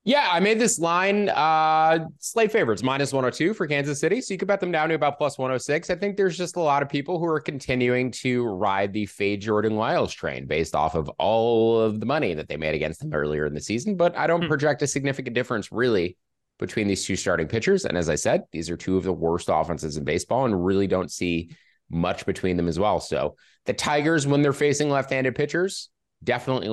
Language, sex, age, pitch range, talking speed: English, male, 20-39, 95-140 Hz, 225 wpm